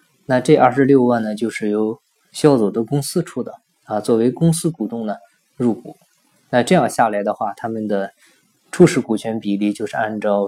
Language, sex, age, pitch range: Chinese, male, 20-39, 105-135 Hz